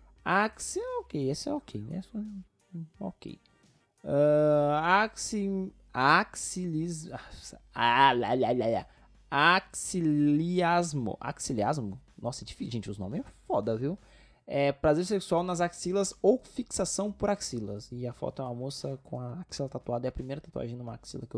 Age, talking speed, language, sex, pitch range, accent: 20-39, 130 wpm, Portuguese, male, 115-180 Hz, Brazilian